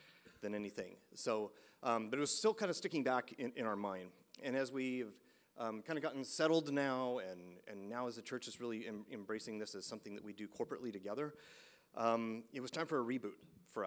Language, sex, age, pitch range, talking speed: English, male, 30-49, 105-135 Hz, 220 wpm